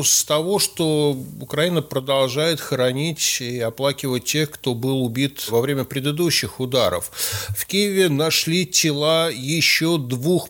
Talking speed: 125 wpm